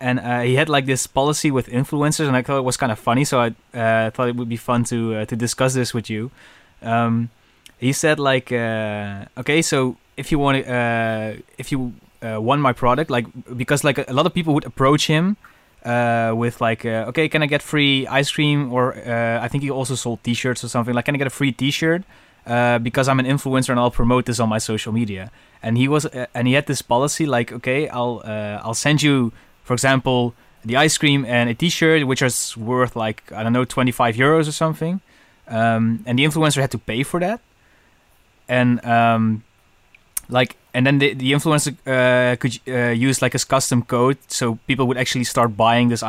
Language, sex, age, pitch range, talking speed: English, male, 20-39, 115-140 Hz, 215 wpm